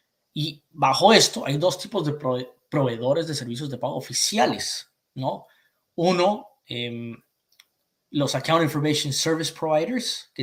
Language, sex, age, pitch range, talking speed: Spanish, male, 20-39, 130-160 Hz, 125 wpm